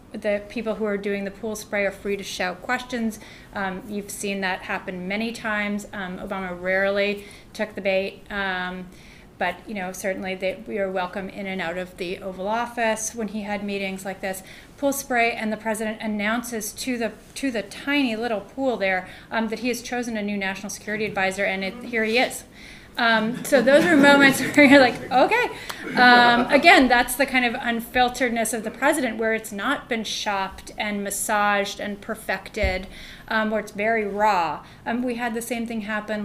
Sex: female